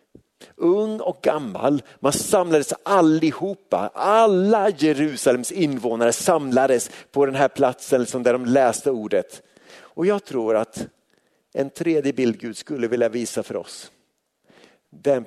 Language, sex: Swedish, male